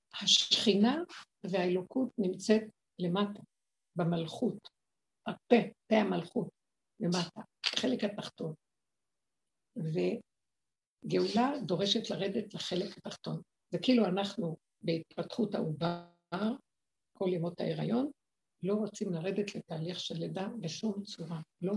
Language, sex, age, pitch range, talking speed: Hebrew, female, 60-79, 180-225 Hz, 90 wpm